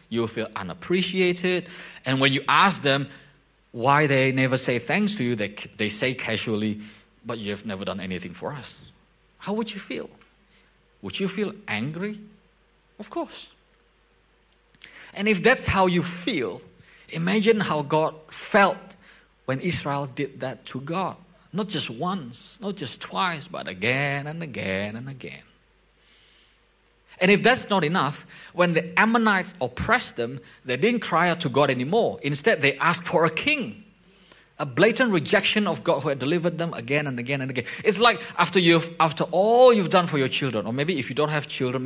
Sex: male